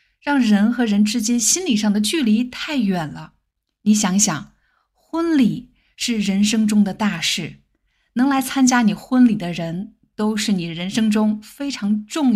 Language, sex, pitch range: Chinese, female, 195-250 Hz